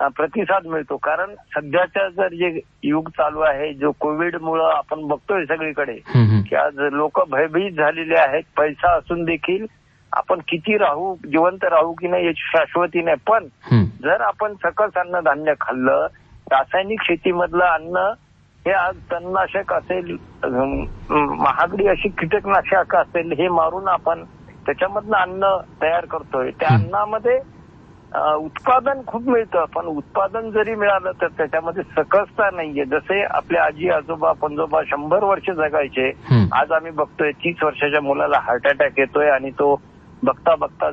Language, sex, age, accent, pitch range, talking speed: Marathi, male, 60-79, native, 145-185 Hz, 135 wpm